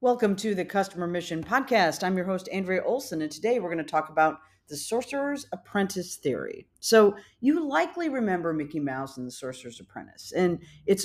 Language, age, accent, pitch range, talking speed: English, 40-59, American, 145-205 Hz, 185 wpm